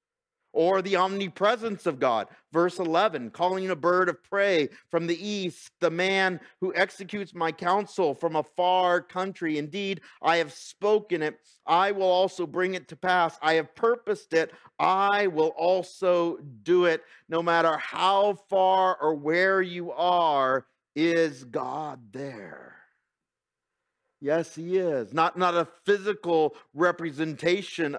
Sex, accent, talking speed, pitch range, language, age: male, American, 140 wpm, 150-185 Hz, English, 50-69